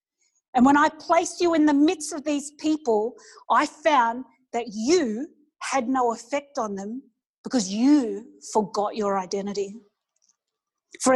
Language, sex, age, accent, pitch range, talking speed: English, female, 40-59, Australian, 225-285 Hz, 140 wpm